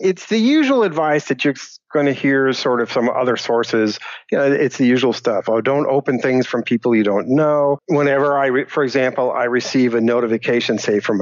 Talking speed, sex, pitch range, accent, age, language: 205 wpm, male, 120-145 Hz, American, 50-69, English